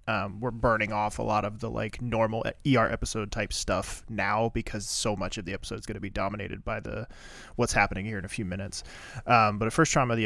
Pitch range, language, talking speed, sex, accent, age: 105-120 Hz, English, 245 wpm, male, American, 20-39